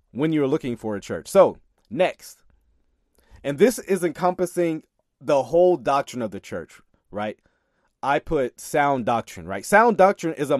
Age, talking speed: 30-49, 160 wpm